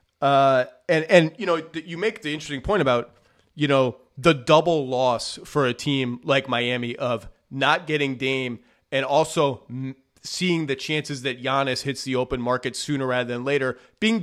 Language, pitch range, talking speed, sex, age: English, 130-165 Hz, 175 wpm, male, 30-49